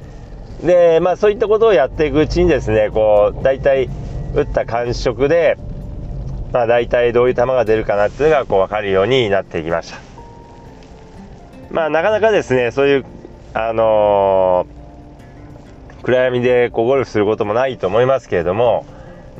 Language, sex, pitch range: Japanese, male, 115-165 Hz